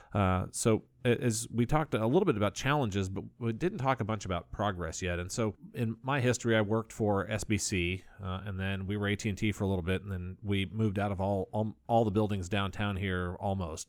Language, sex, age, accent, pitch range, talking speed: English, male, 30-49, American, 90-110 Hz, 235 wpm